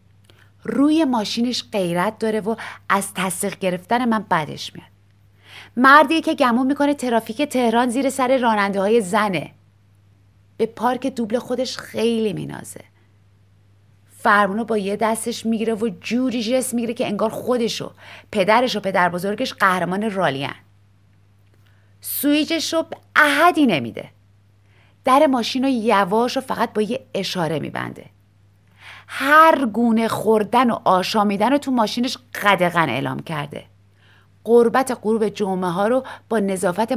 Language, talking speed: Persian, 125 wpm